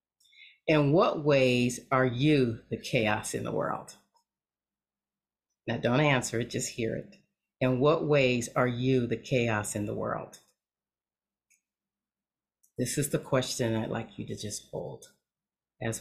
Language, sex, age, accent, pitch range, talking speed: English, female, 40-59, American, 115-130 Hz, 140 wpm